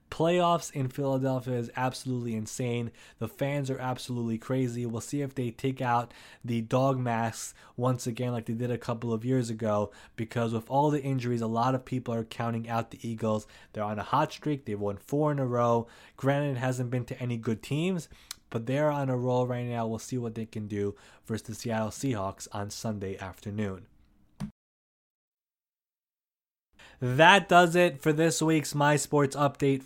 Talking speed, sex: 185 wpm, male